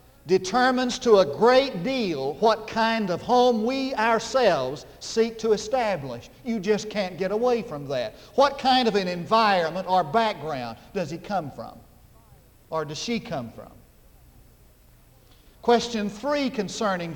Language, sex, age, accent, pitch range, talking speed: English, male, 50-69, American, 175-235 Hz, 140 wpm